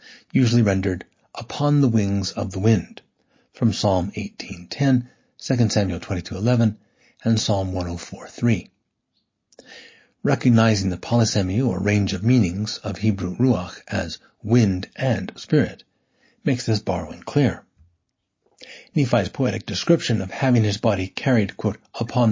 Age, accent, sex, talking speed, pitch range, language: 60-79, American, male, 120 wpm, 95-125 Hz, English